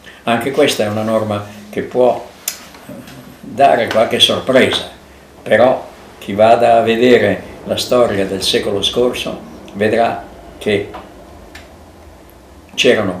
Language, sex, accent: Italian, male, native